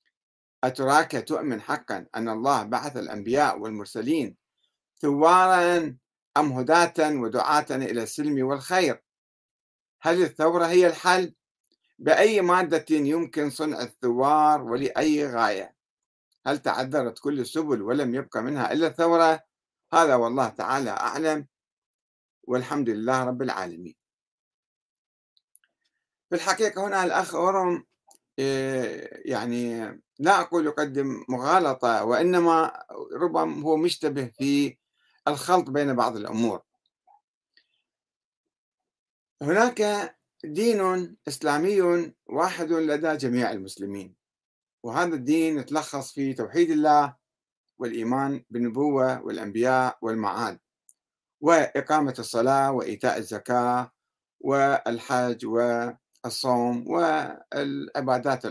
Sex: male